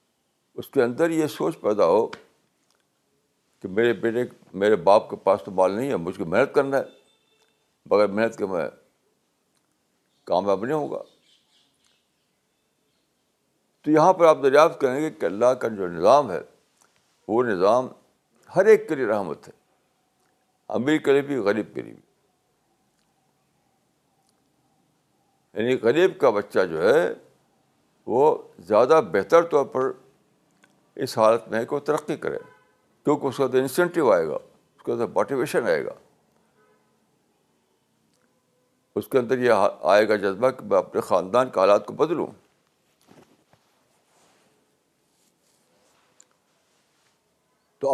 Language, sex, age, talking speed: Urdu, male, 60-79, 125 wpm